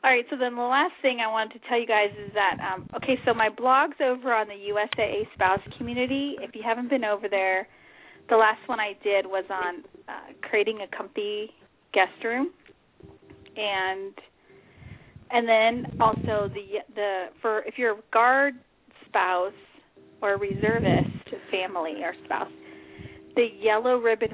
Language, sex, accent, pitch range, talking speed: English, female, American, 195-240 Hz, 165 wpm